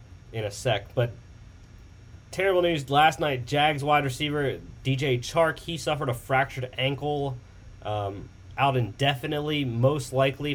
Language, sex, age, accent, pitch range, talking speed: English, male, 30-49, American, 105-145 Hz, 130 wpm